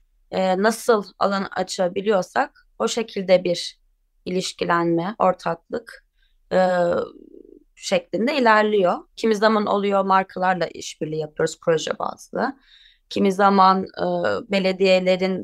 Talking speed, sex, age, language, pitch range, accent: 90 wpm, female, 30-49, Turkish, 180-230 Hz, native